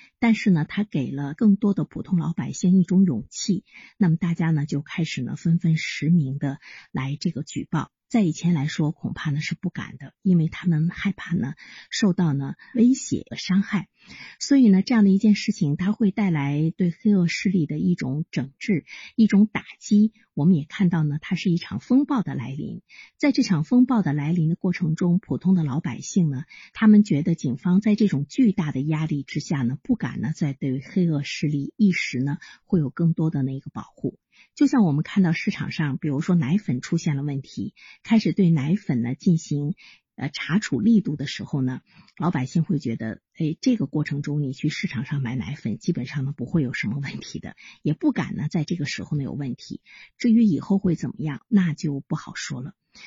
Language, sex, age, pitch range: Chinese, female, 50-69, 145-195 Hz